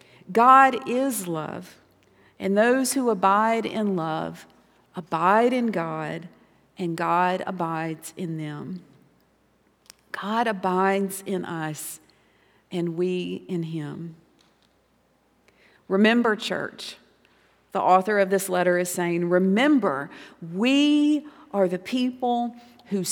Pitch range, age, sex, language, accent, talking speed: 180-225 Hz, 50-69, female, English, American, 105 wpm